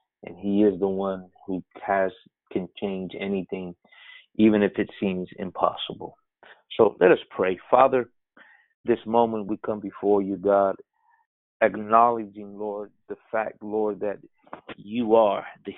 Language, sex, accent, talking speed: English, male, American, 135 wpm